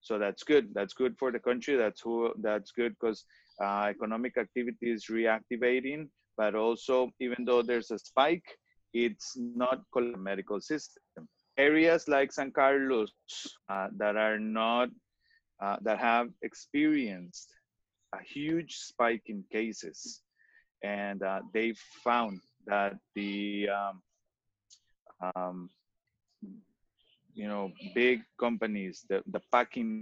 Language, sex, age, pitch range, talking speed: English, male, 30-49, 105-130 Hz, 125 wpm